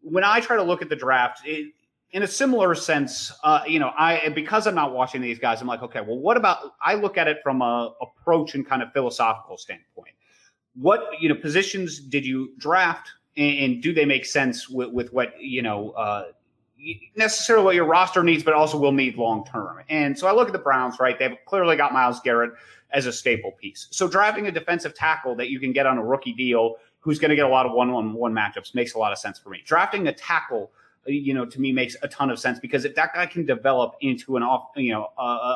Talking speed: 240 wpm